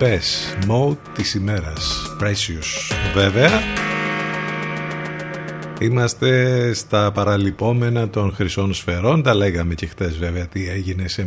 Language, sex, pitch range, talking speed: Greek, male, 90-115 Hz, 100 wpm